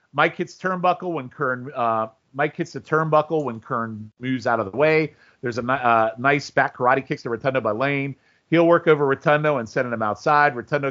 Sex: male